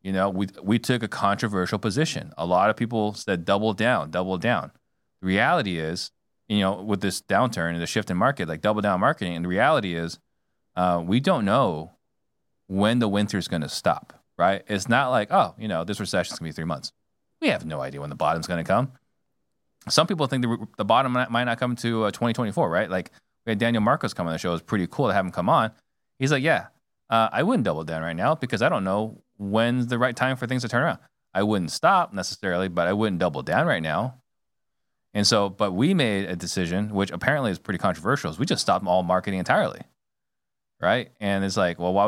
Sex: male